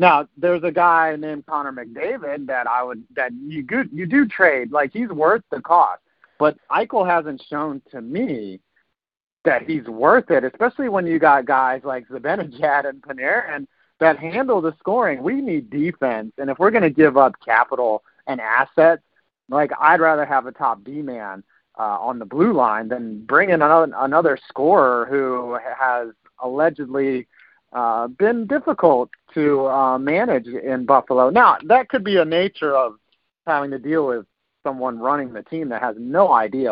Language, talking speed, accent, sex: English, 170 wpm, American, male